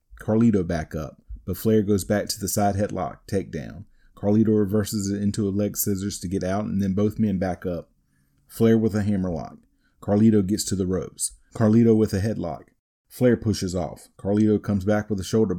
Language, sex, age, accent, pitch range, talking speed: English, male, 30-49, American, 95-110 Hz, 195 wpm